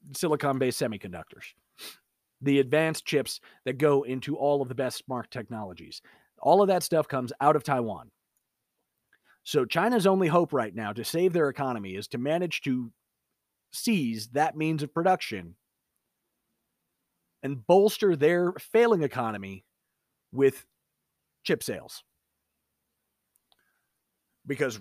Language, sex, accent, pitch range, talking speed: English, male, American, 125-175 Hz, 120 wpm